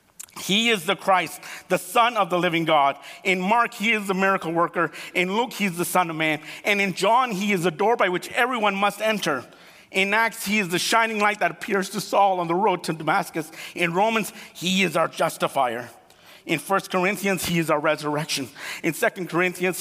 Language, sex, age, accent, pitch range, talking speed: English, male, 50-69, American, 165-205 Hz, 210 wpm